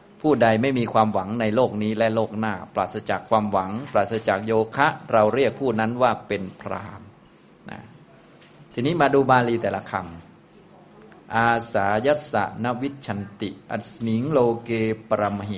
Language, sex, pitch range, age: Thai, male, 100-120 Hz, 20-39